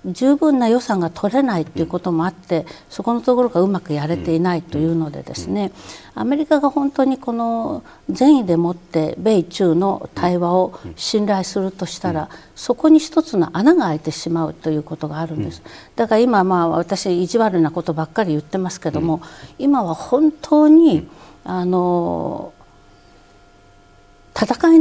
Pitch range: 160-230 Hz